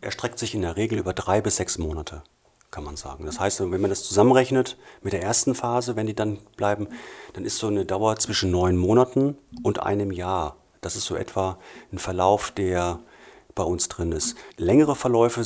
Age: 40-59